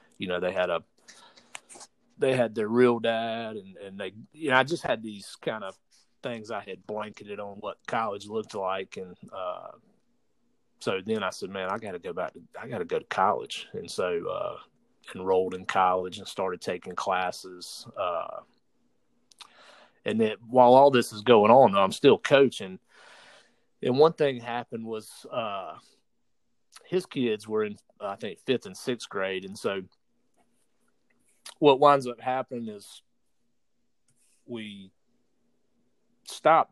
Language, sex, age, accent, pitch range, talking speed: English, male, 30-49, American, 95-130 Hz, 150 wpm